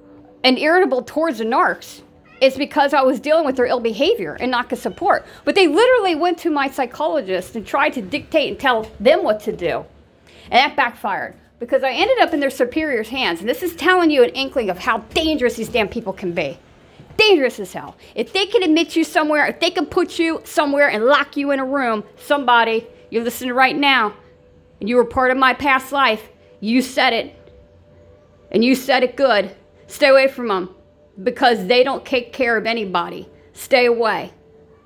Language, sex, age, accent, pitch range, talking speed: English, female, 50-69, American, 230-290 Hz, 200 wpm